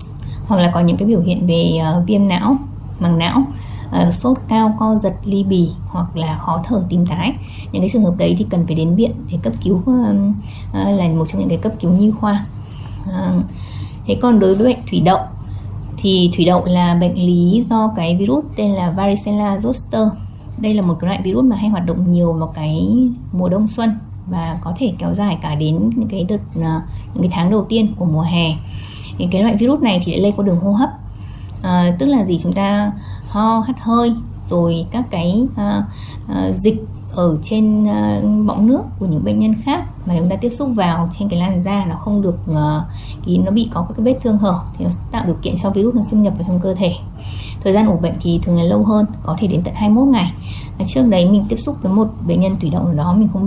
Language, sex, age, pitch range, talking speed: Vietnamese, female, 20-39, 150-210 Hz, 235 wpm